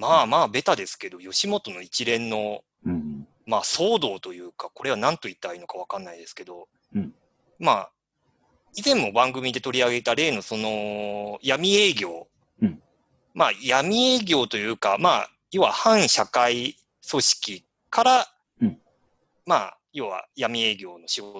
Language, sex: Japanese, male